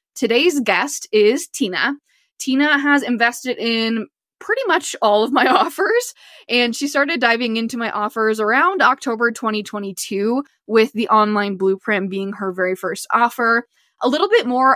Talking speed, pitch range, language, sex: 150 wpm, 210-265 Hz, English, female